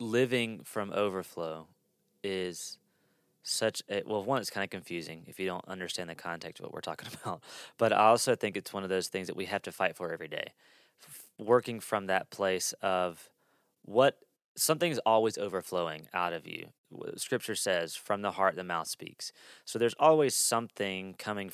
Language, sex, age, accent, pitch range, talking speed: English, male, 20-39, American, 90-110 Hz, 180 wpm